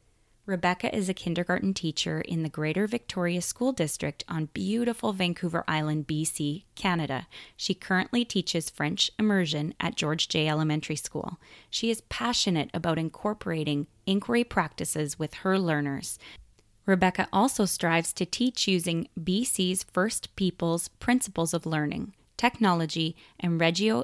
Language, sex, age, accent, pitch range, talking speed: English, female, 20-39, American, 160-205 Hz, 130 wpm